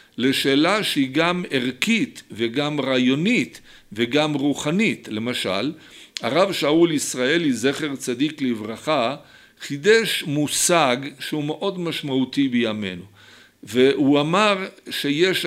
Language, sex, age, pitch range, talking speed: Hebrew, male, 50-69, 135-180 Hz, 95 wpm